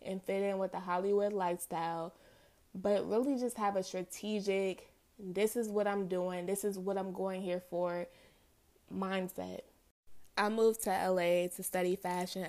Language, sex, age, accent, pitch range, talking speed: English, female, 20-39, American, 180-200 Hz, 160 wpm